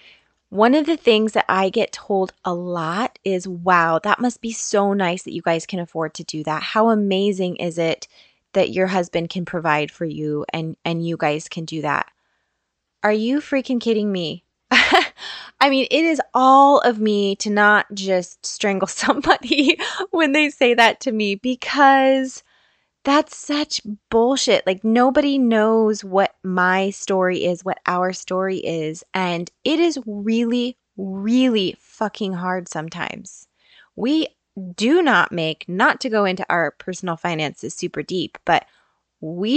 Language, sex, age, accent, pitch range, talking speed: English, female, 20-39, American, 180-240 Hz, 160 wpm